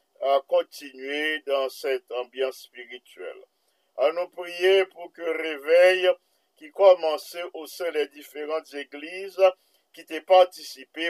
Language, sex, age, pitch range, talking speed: English, male, 50-69, 150-190 Hz, 125 wpm